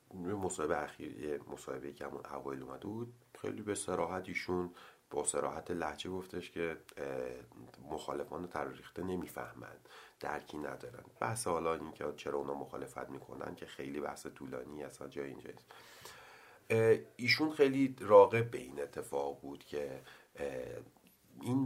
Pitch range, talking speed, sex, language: 70-100 Hz, 125 wpm, male, Persian